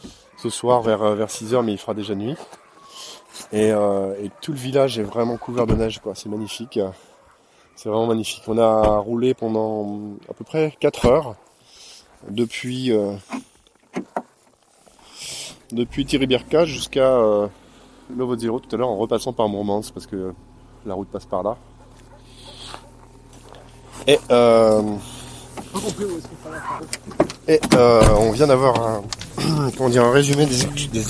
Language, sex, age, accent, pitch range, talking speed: French, male, 20-39, French, 100-125 Hz, 135 wpm